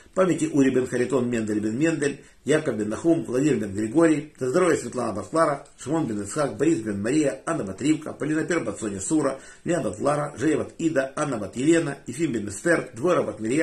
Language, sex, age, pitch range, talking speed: Russian, male, 50-69, 115-160 Hz, 170 wpm